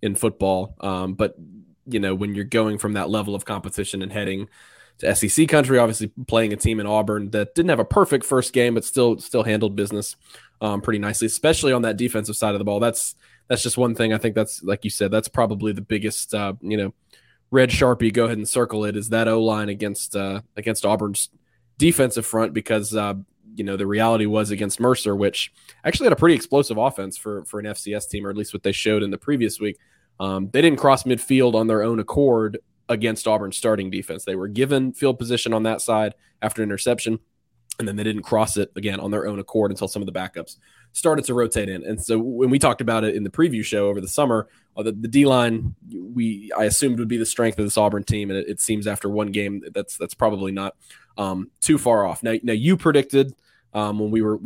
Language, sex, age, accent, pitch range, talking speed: English, male, 20-39, American, 105-120 Hz, 230 wpm